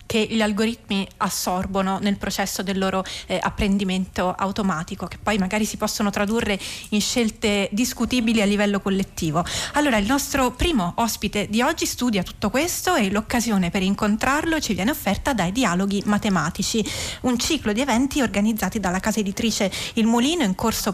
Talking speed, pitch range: 160 wpm, 195-235 Hz